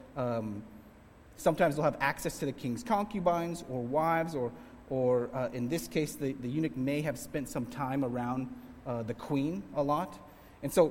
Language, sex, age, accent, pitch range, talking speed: English, male, 30-49, American, 110-150 Hz, 195 wpm